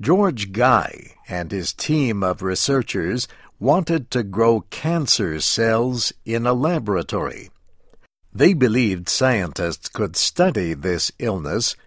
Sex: male